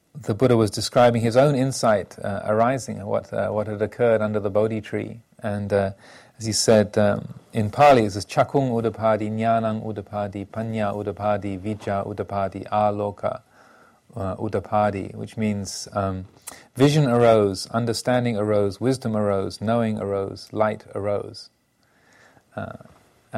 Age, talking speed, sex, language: 40-59, 135 wpm, male, English